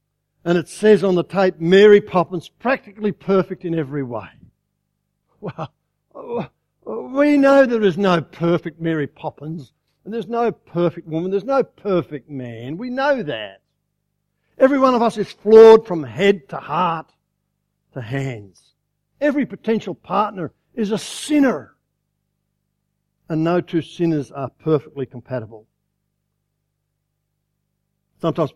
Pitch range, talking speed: 140-185 Hz, 125 wpm